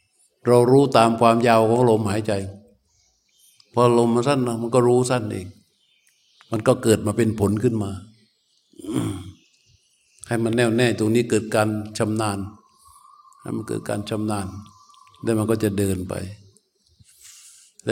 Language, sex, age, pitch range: Thai, male, 60-79, 105-120 Hz